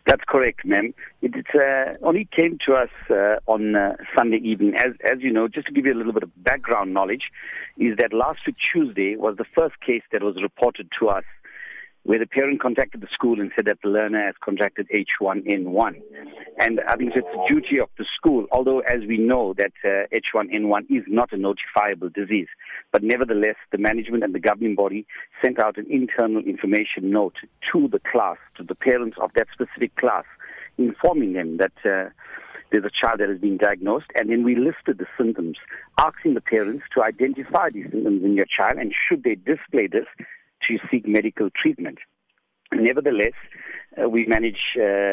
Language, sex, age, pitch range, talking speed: English, male, 50-69, 100-125 Hz, 185 wpm